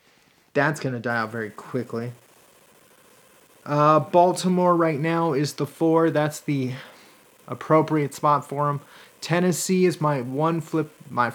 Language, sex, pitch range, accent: English, male, 135-180 Hz, American